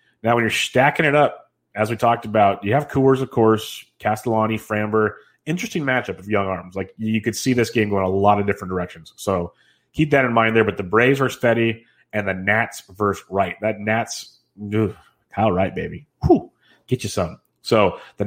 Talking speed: 200 wpm